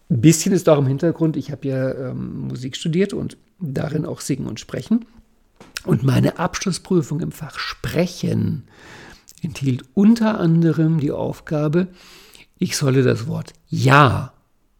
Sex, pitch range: male, 145-180 Hz